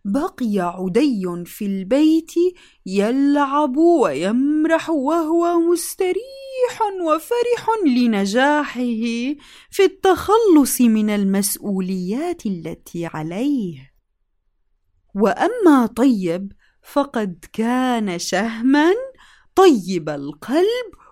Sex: female